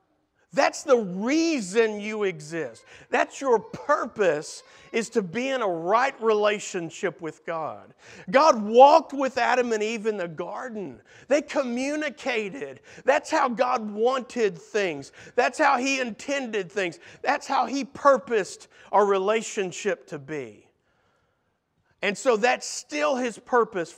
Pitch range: 205-270 Hz